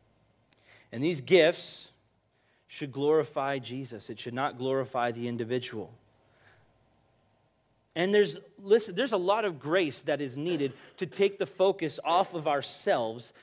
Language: English